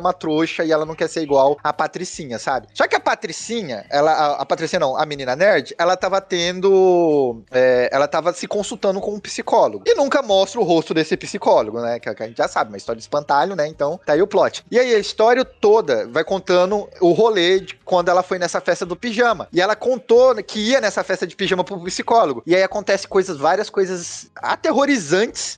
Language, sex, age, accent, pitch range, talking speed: Portuguese, male, 20-39, Brazilian, 170-220 Hz, 220 wpm